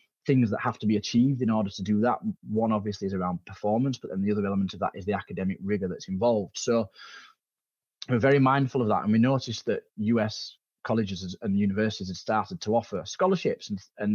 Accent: British